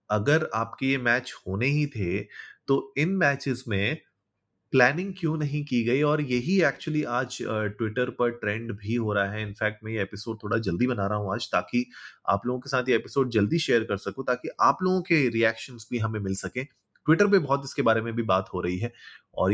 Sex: male